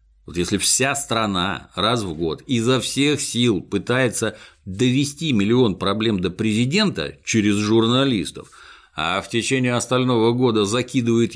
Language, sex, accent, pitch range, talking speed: Russian, male, native, 90-130 Hz, 125 wpm